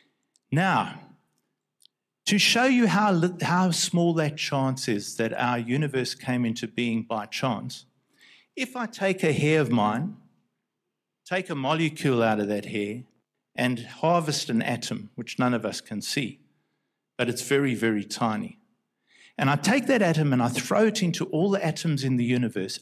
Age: 50-69